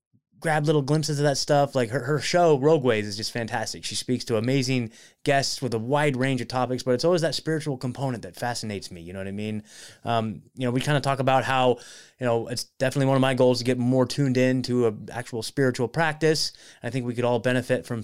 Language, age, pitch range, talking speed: English, 20-39, 120-155 Hz, 245 wpm